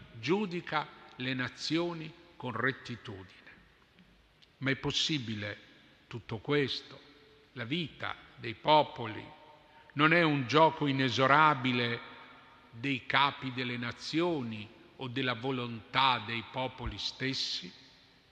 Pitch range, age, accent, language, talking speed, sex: 125-175 Hz, 40-59, native, Italian, 95 wpm, male